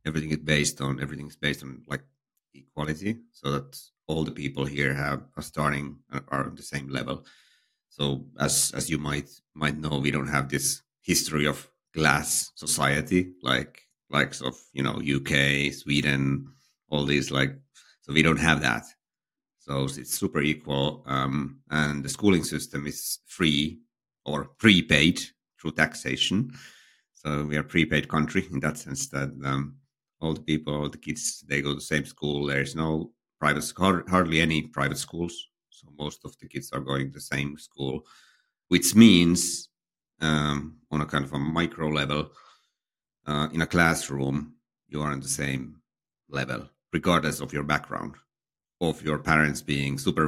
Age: 50-69